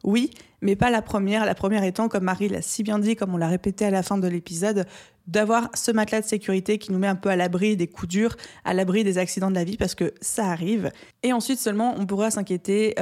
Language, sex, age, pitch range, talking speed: French, female, 20-39, 190-225 Hz, 255 wpm